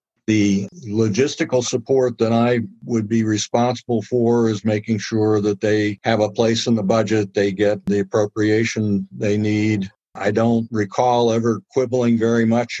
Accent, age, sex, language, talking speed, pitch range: American, 50-69, male, English, 155 wpm, 100-115 Hz